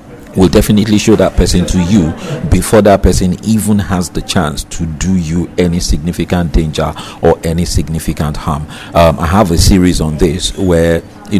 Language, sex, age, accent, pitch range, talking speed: English, male, 50-69, Nigerian, 85-100 Hz, 175 wpm